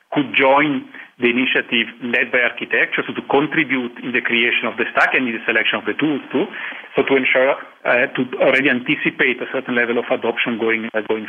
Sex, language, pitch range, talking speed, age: male, English, 120-135 Hz, 205 wpm, 40-59